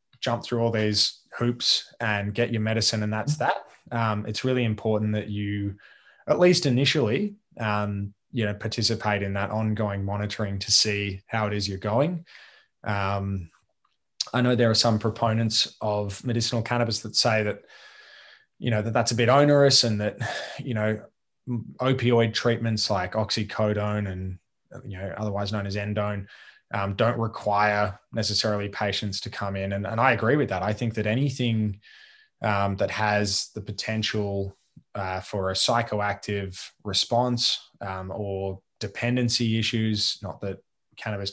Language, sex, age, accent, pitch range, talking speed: English, male, 20-39, Australian, 100-120 Hz, 155 wpm